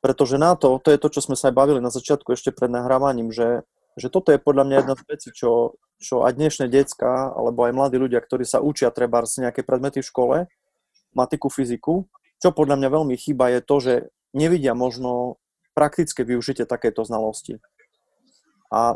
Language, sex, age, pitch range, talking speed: Slovak, male, 30-49, 125-145 Hz, 185 wpm